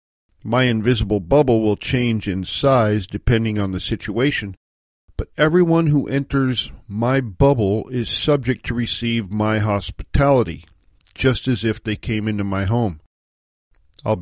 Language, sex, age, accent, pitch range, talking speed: English, male, 50-69, American, 100-130 Hz, 135 wpm